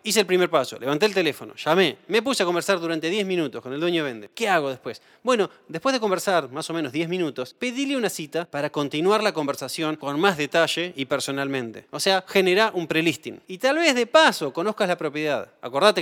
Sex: male